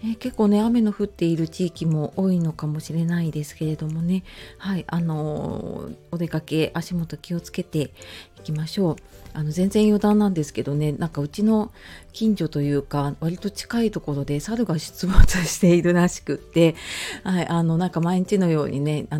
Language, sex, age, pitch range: Japanese, female, 40-59, 150-205 Hz